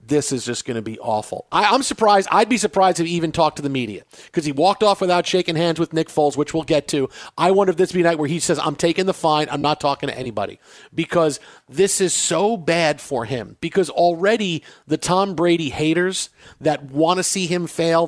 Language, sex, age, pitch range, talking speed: English, male, 40-59, 150-200 Hz, 240 wpm